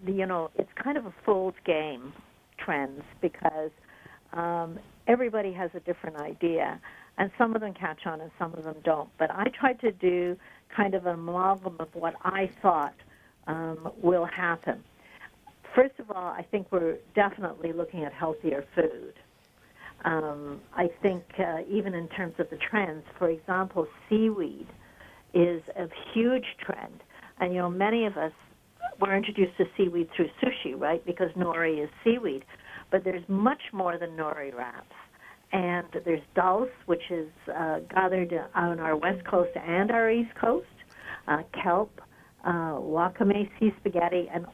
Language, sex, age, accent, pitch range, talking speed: English, female, 60-79, American, 165-200 Hz, 160 wpm